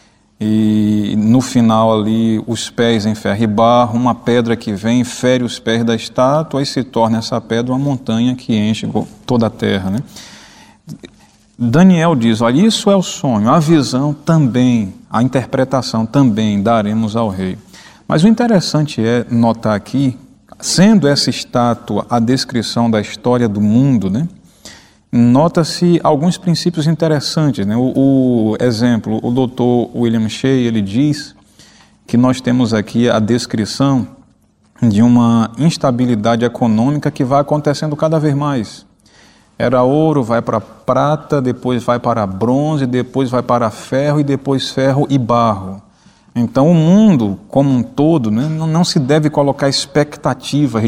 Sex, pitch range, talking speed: male, 115-145 Hz, 145 wpm